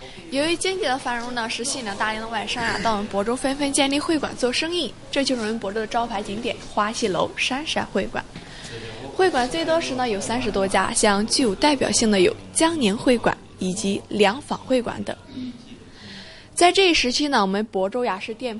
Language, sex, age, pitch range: Chinese, female, 20-39, 195-255 Hz